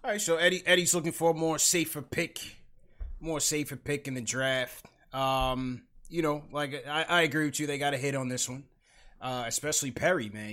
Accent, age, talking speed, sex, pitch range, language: American, 20-39, 205 wpm, male, 120-145 Hz, English